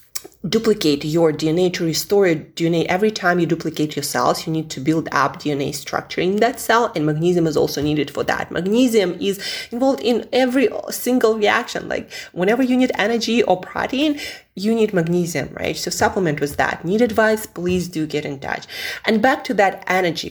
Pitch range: 155-215 Hz